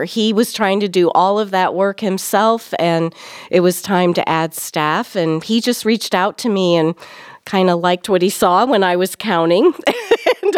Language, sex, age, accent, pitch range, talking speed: English, female, 40-59, American, 175-225 Hz, 205 wpm